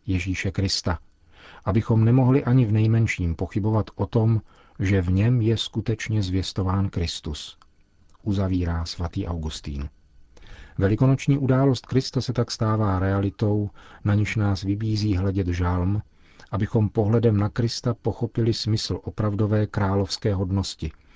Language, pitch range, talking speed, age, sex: Czech, 90-110 Hz, 120 wpm, 40-59, male